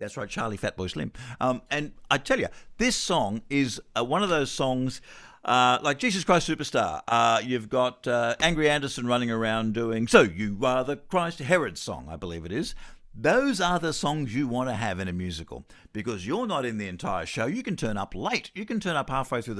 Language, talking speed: English, 215 wpm